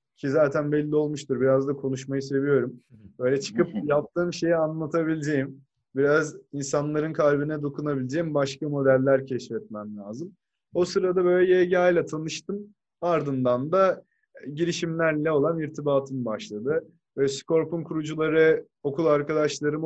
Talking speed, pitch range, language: 115 wpm, 135-165 Hz, Turkish